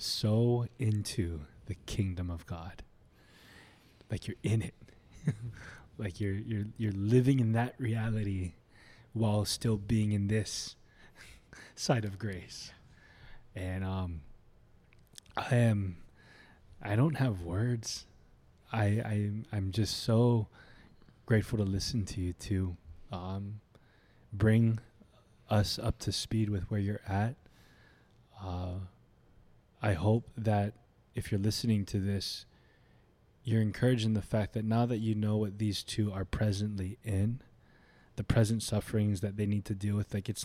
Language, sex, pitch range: English, male, 100-115 Hz